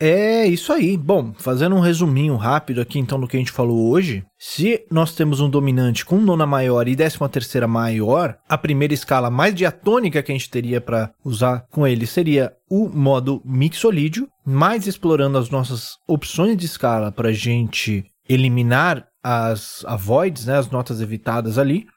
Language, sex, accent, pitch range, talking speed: Portuguese, male, Brazilian, 120-160 Hz, 170 wpm